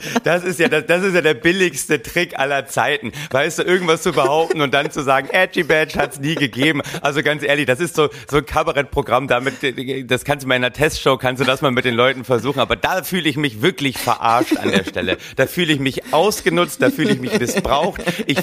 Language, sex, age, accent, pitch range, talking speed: German, male, 40-59, German, 130-175 Hz, 235 wpm